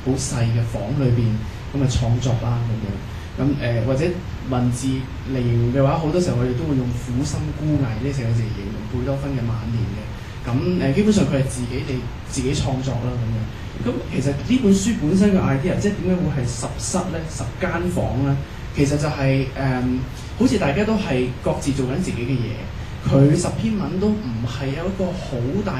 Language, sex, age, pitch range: Chinese, male, 20-39, 120-145 Hz